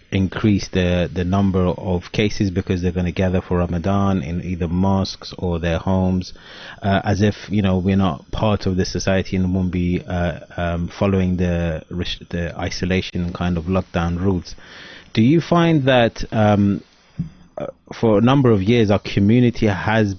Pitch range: 90-105 Hz